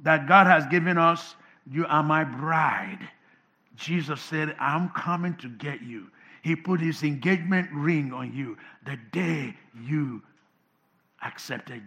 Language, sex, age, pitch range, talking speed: English, male, 60-79, 175-230 Hz, 135 wpm